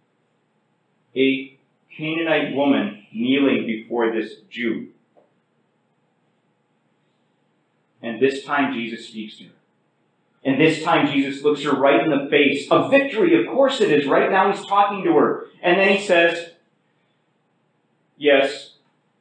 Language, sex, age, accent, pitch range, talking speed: English, male, 40-59, American, 115-150 Hz, 130 wpm